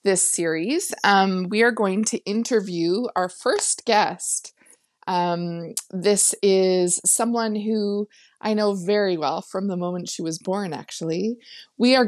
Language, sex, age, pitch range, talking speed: English, female, 20-39, 175-215 Hz, 145 wpm